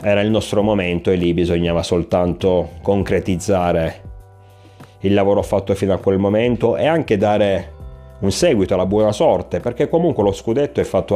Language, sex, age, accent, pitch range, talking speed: Italian, male, 30-49, native, 90-105 Hz, 160 wpm